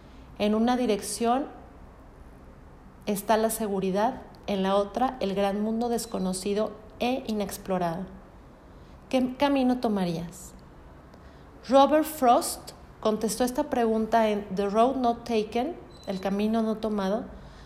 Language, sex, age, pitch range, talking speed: Spanish, female, 40-59, 200-235 Hz, 110 wpm